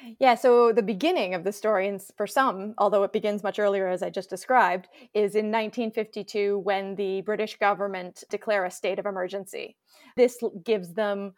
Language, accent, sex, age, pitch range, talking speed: English, American, female, 20-39, 195-225 Hz, 180 wpm